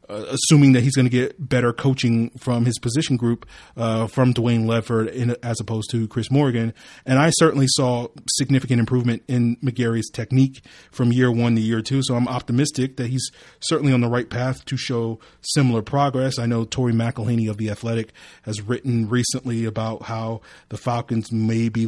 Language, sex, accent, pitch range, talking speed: English, male, American, 115-130 Hz, 180 wpm